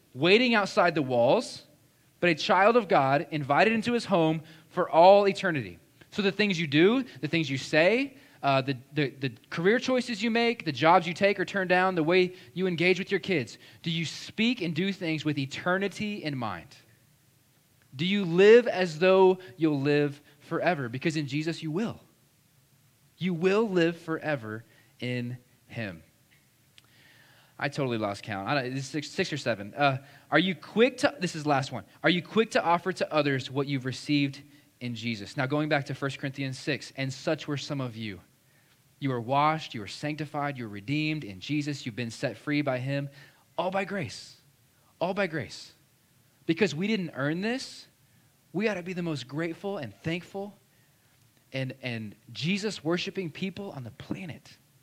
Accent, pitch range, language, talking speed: American, 135-180 Hz, English, 185 wpm